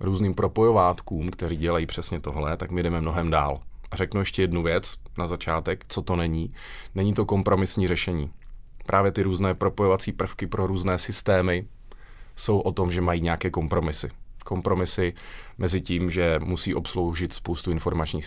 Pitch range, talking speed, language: 85-95 Hz, 160 wpm, Czech